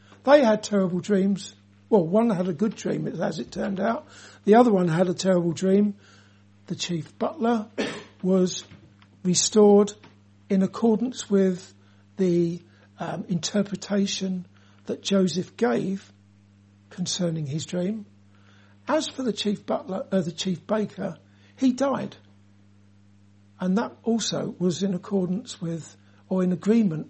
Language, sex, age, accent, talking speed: English, male, 60-79, British, 130 wpm